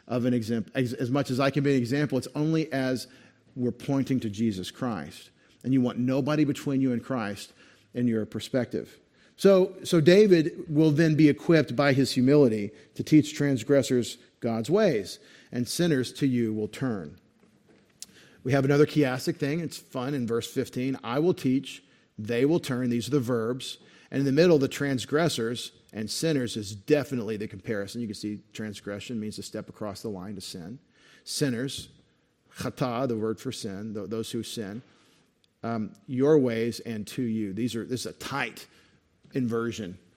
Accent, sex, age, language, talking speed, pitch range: American, male, 50-69, English, 175 wpm, 115-150 Hz